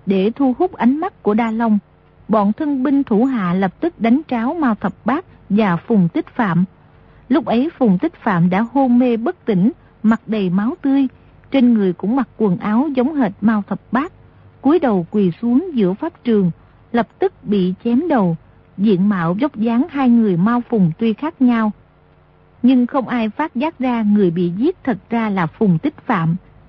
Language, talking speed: Vietnamese, 195 wpm